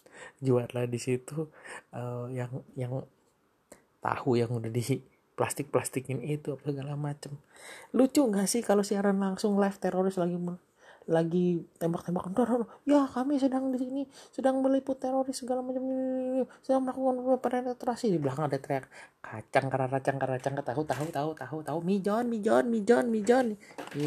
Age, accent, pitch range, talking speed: 30-49, native, 140-225 Hz, 140 wpm